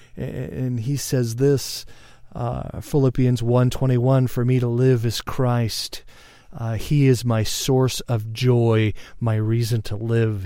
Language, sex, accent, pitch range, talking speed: English, male, American, 105-125 Hz, 150 wpm